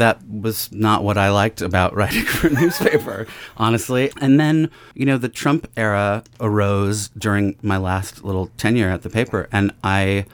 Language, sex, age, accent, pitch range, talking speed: English, male, 30-49, American, 95-115 Hz, 175 wpm